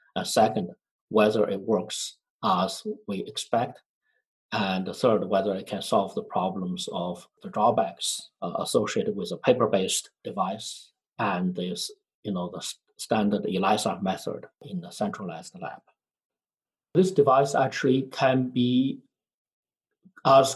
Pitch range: 115-145 Hz